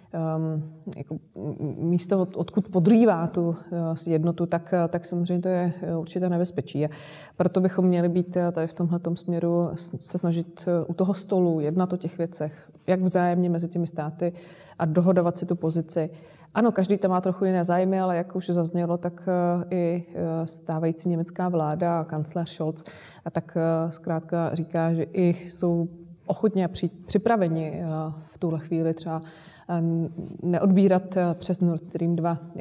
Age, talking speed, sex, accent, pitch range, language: 20-39, 140 wpm, female, native, 165-185 Hz, Czech